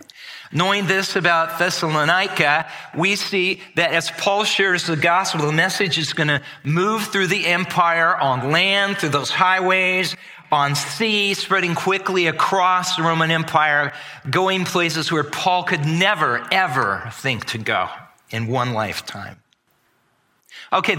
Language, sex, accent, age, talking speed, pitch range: English, male, American, 40-59, 135 wpm, 135-180 Hz